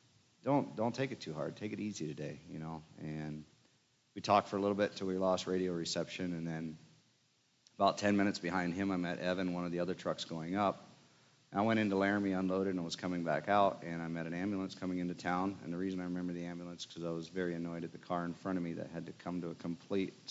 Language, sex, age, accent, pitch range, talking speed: English, male, 40-59, American, 85-105 Hz, 255 wpm